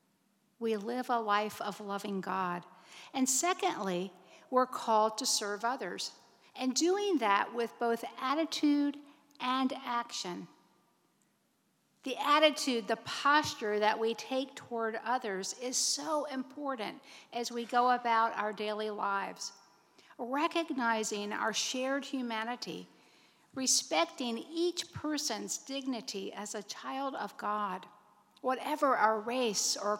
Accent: American